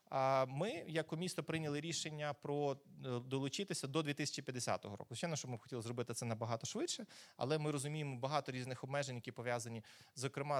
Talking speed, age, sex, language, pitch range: 155 wpm, 30-49, male, Ukrainian, 130-170 Hz